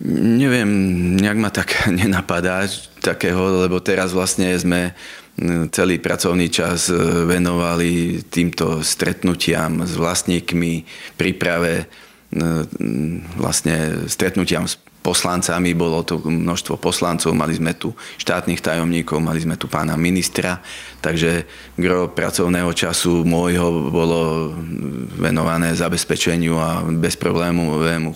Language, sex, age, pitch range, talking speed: Slovak, male, 30-49, 85-90 Hz, 100 wpm